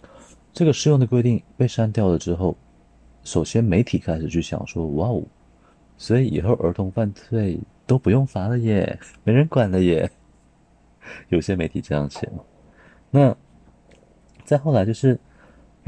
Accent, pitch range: native, 80-115 Hz